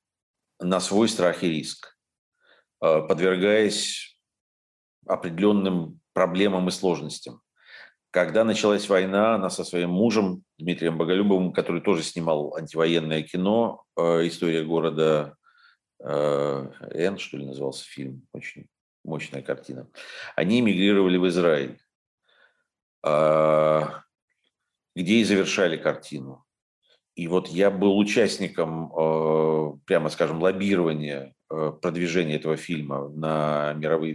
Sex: male